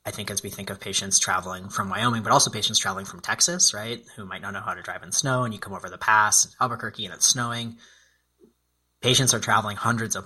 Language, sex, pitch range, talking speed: English, male, 95-110 Hz, 240 wpm